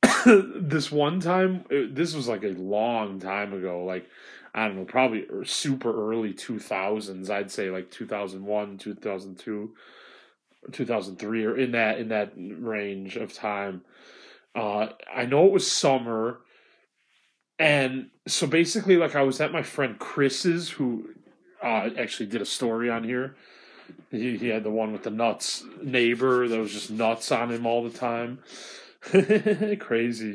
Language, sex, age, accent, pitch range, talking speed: English, male, 30-49, American, 105-140 Hz, 150 wpm